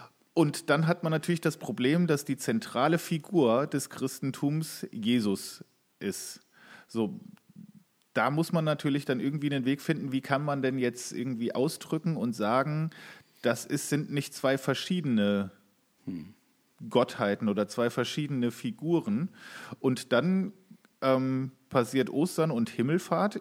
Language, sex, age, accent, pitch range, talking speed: German, male, 40-59, German, 125-165 Hz, 130 wpm